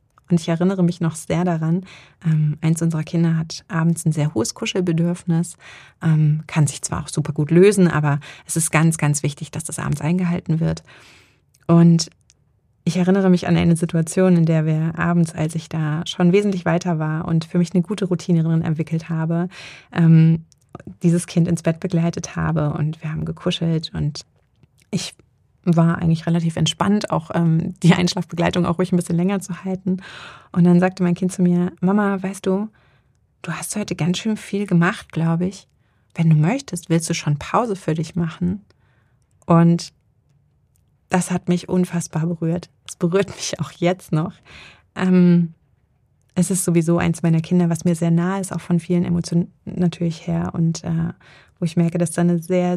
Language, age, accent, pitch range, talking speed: German, 30-49, German, 160-180 Hz, 175 wpm